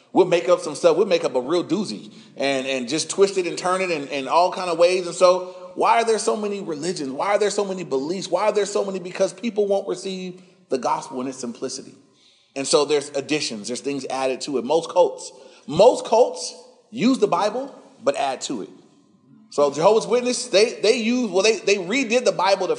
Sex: male